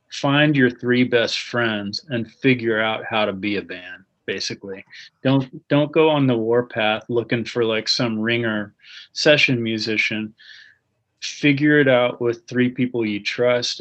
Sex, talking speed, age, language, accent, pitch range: male, 155 wpm, 30-49, English, American, 110-125 Hz